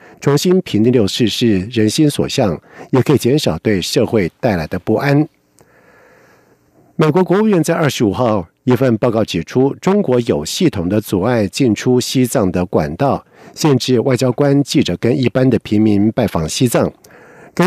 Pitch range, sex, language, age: 105-135 Hz, male, German, 50-69